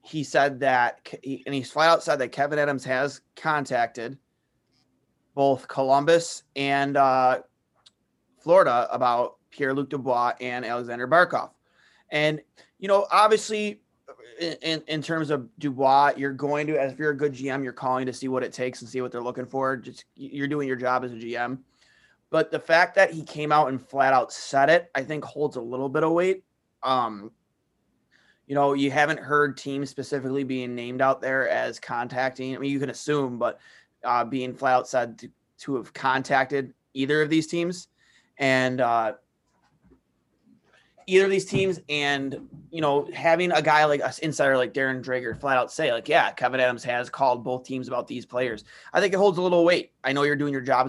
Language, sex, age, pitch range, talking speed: English, male, 20-39, 130-150 Hz, 190 wpm